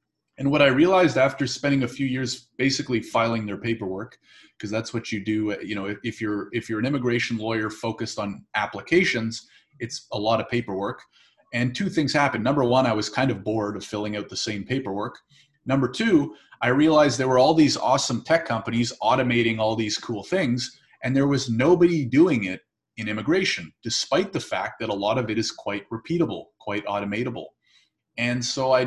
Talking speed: 190 wpm